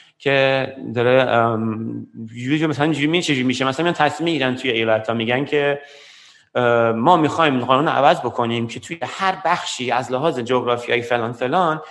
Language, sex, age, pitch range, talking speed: Persian, male, 30-49, 125-165 Hz, 155 wpm